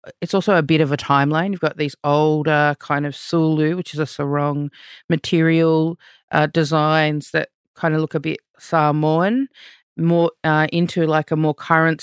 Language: English